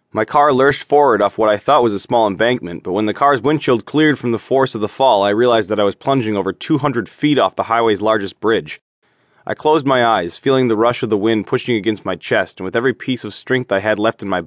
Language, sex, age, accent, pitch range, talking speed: English, male, 20-39, American, 105-130 Hz, 260 wpm